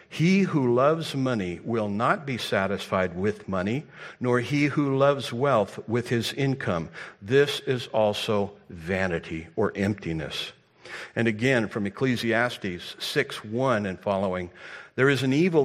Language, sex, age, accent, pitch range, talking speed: English, male, 60-79, American, 100-140 Hz, 135 wpm